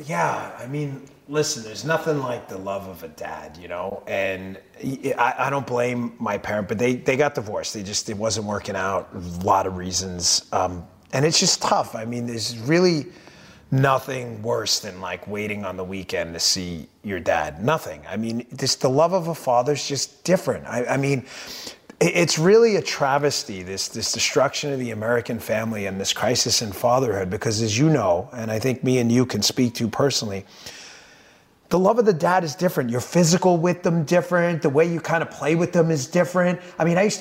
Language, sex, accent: English, male, American